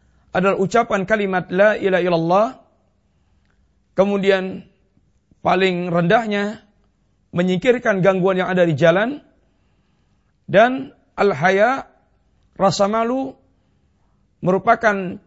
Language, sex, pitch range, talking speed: Malay, male, 175-225 Hz, 85 wpm